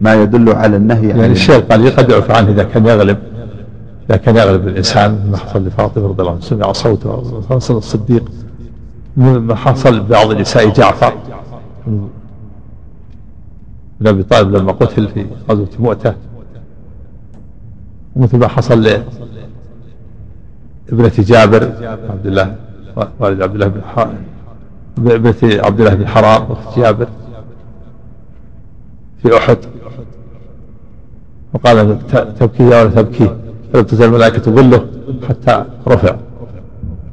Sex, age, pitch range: male, 60-79, 105-120 Hz